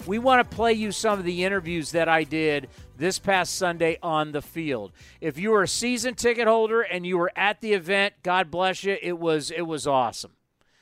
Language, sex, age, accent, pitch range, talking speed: English, male, 40-59, American, 155-220 Hz, 215 wpm